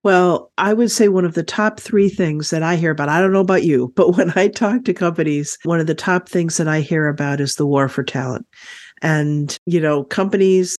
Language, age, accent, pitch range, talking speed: English, 50-69, American, 155-185 Hz, 240 wpm